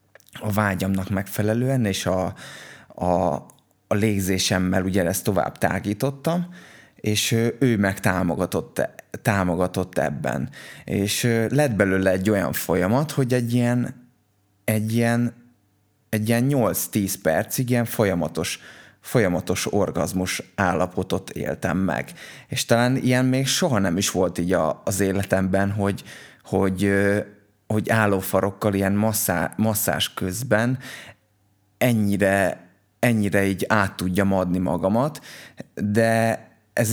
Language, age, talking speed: Hungarian, 20-39, 110 wpm